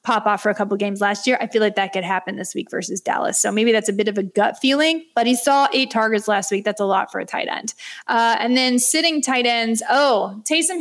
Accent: American